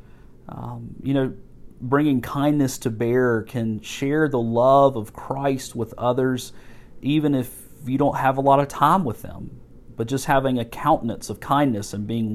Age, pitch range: 40-59, 120-145 Hz